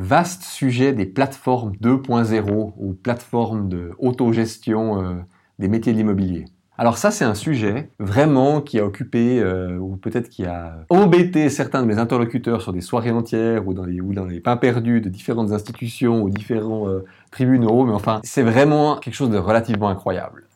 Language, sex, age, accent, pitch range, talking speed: French, male, 30-49, French, 100-125 Hz, 180 wpm